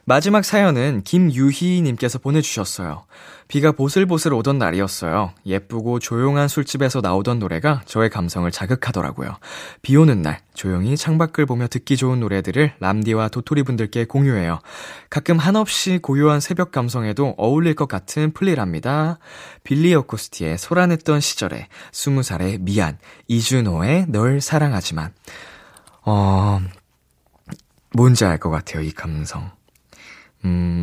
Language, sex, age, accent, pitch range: Korean, male, 20-39, native, 95-155 Hz